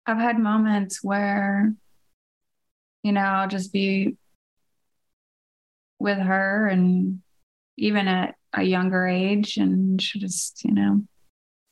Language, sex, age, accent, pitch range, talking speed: English, female, 20-39, American, 165-205 Hz, 115 wpm